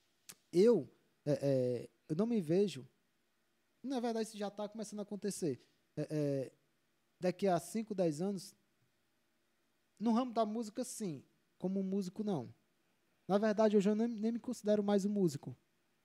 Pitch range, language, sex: 155-215 Hz, Portuguese, male